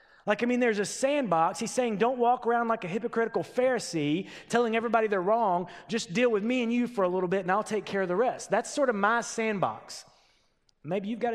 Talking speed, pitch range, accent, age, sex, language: 235 wpm, 150-240 Hz, American, 30-49, male, English